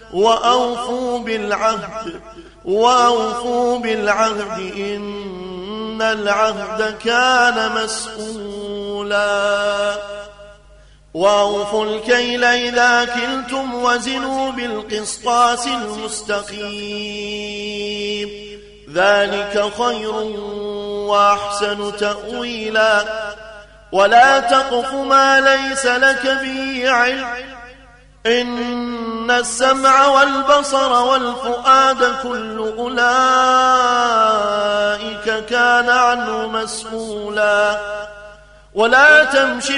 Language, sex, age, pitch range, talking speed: Arabic, male, 30-49, 210-245 Hz, 55 wpm